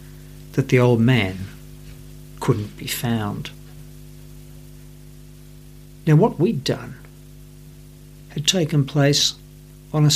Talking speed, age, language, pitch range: 95 wpm, 60-79, English, 125-145 Hz